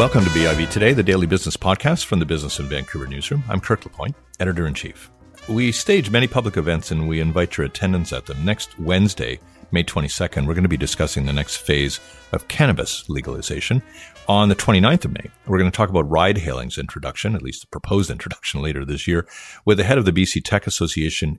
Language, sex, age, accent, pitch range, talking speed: English, male, 50-69, American, 80-100 Hz, 210 wpm